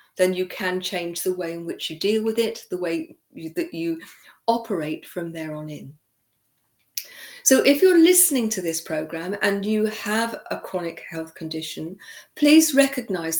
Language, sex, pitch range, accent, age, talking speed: English, female, 175-230 Hz, British, 50-69, 170 wpm